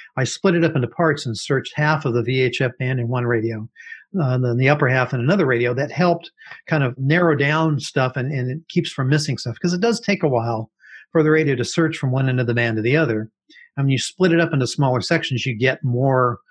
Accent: American